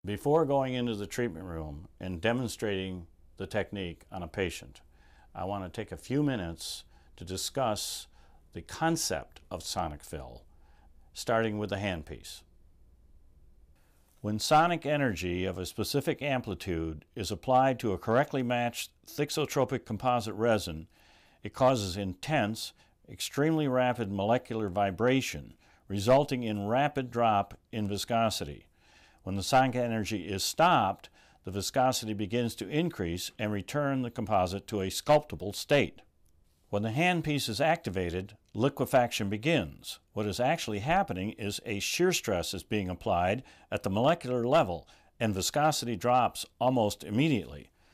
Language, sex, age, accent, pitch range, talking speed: English, male, 60-79, American, 90-130 Hz, 135 wpm